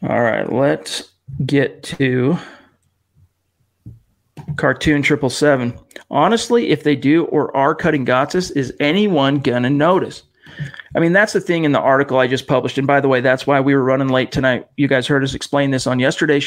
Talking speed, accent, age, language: 180 wpm, American, 40-59, English